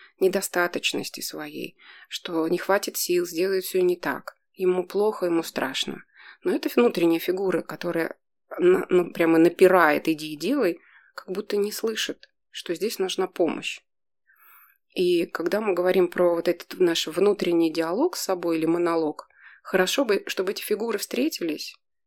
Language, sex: Russian, female